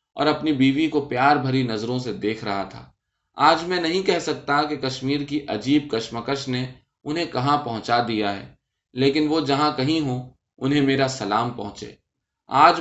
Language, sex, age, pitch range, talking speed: Urdu, male, 20-39, 115-150 Hz, 175 wpm